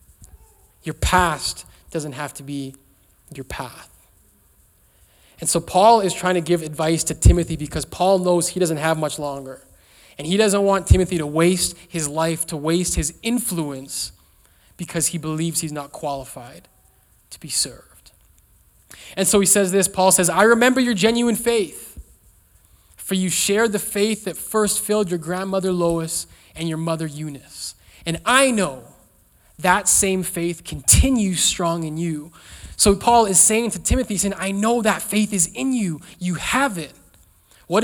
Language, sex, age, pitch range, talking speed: English, male, 20-39, 145-205 Hz, 165 wpm